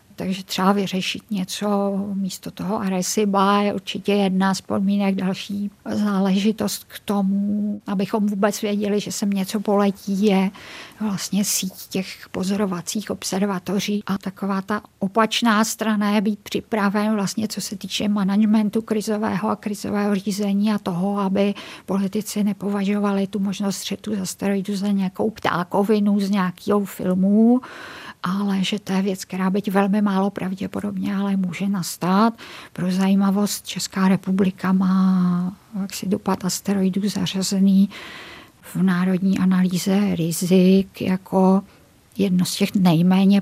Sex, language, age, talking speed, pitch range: female, Czech, 50-69, 130 wpm, 190-205 Hz